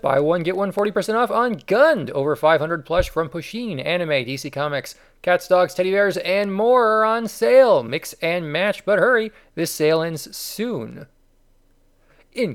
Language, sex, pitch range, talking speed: English, male, 135-180 Hz, 165 wpm